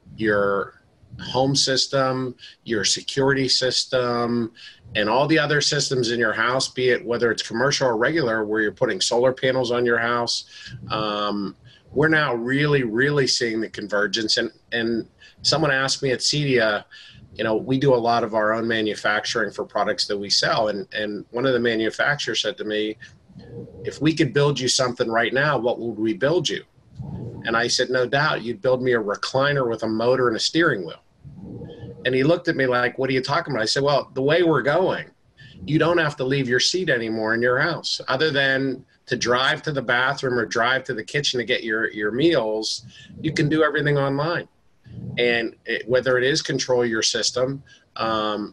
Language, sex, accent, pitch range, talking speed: English, male, American, 115-140 Hz, 190 wpm